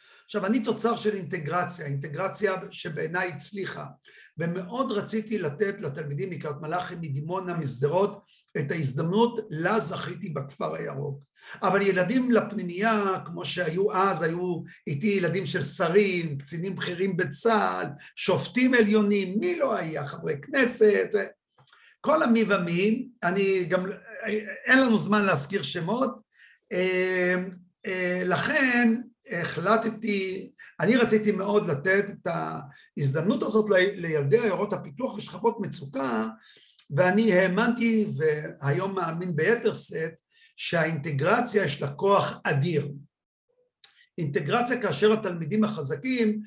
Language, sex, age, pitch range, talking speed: English, male, 50-69, 165-215 Hz, 105 wpm